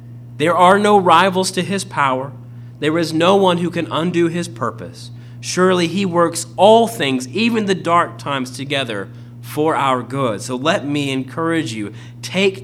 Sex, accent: male, American